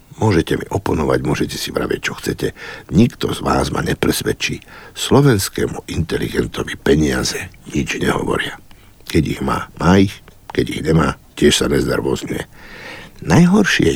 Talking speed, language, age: 130 wpm, Slovak, 60-79